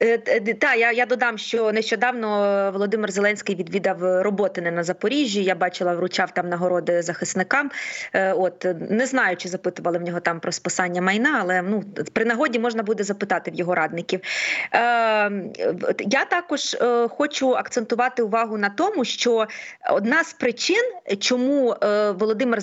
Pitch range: 195-250 Hz